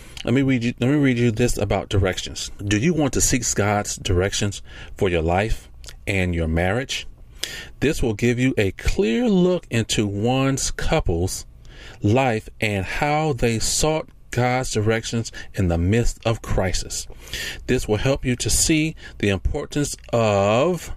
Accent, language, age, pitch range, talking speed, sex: American, English, 40-59, 95-120 Hz, 155 wpm, male